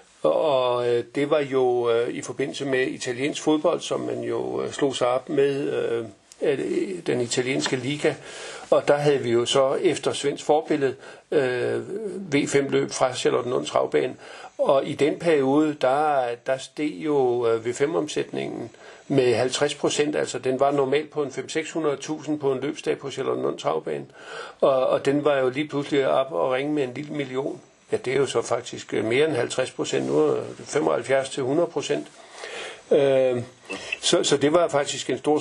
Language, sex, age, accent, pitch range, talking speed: Danish, male, 60-79, native, 135-155 Hz, 160 wpm